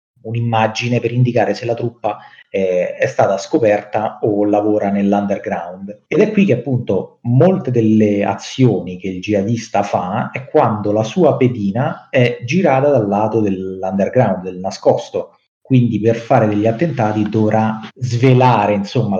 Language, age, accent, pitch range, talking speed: Italian, 30-49, native, 100-125 Hz, 140 wpm